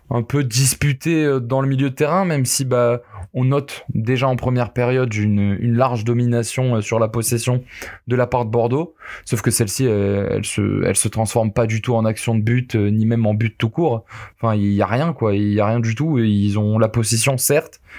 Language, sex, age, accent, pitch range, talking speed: French, male, 20-39, French, 115-135 Hz, 225 wpm